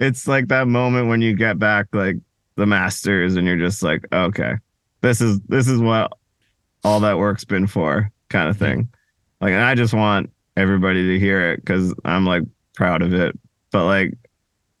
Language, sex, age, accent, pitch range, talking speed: English, male, 20-39, American, 95-110 Hz, 185 wpm